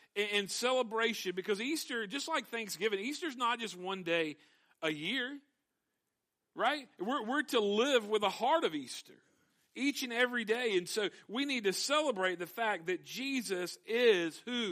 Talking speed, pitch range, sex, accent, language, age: 165 wpm, 195-250 Hz, male, American, English, 50-69